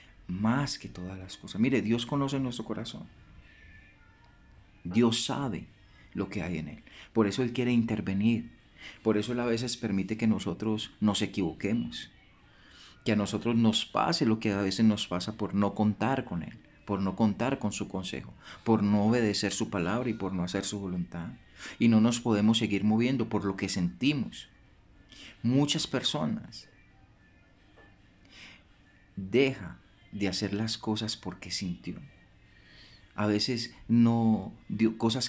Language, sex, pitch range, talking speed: Spanish, male, 100-115 Hz, 150 wpm